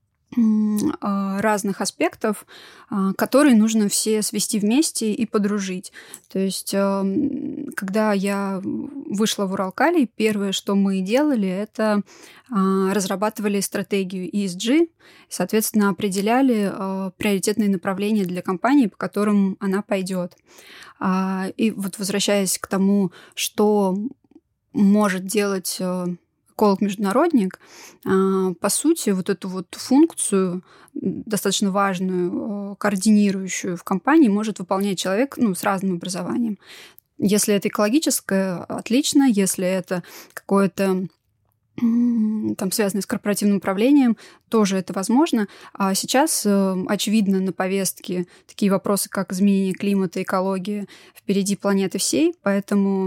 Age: 20-39